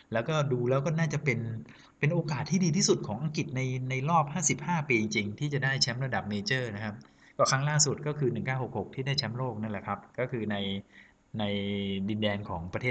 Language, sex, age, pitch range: Thai, male, 20-39, 105-135 Hz